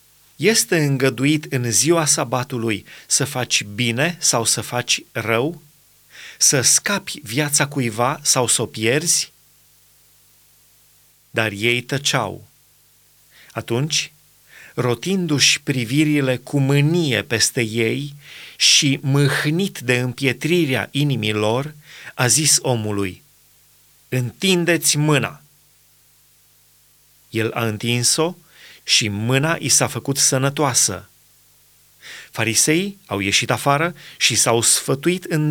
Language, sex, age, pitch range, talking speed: Romanian, male, 30-49, 120-150 Hz, 95 wpm